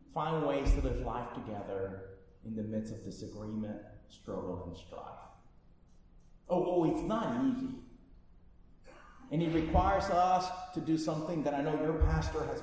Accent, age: American, 30-49